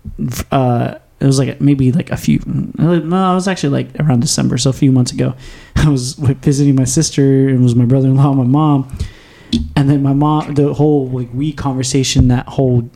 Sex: male